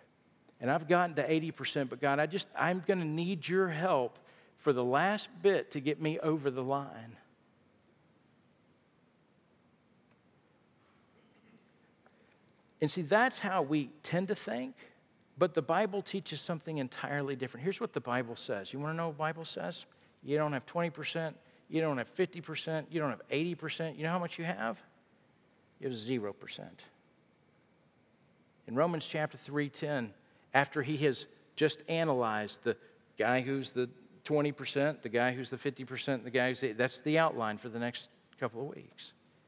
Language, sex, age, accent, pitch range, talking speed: English, male, 50-69, American, 145-235 Hz, 160 wpm